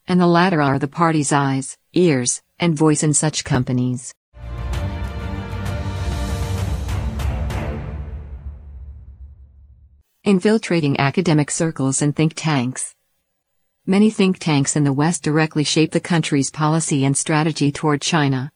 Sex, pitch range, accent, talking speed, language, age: female, 135-170 Hz, American, 110 wpm, English, 50-69